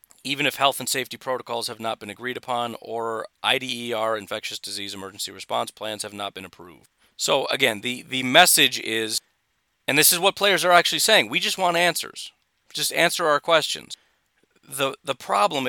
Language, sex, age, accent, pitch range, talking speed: English, male, 40-59, American, 120-140 Hz, 180 wpm